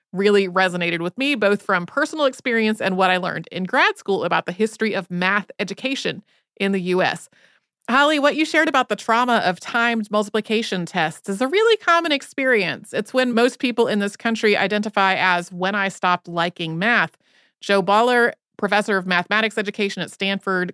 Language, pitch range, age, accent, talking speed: Danish, 180-235 Hz, 30-49, American, 180 wpm